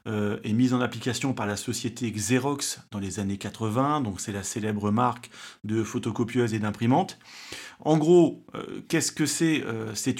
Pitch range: 115-145 Hz